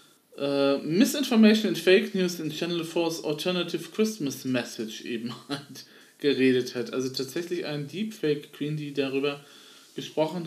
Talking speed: 125 wpm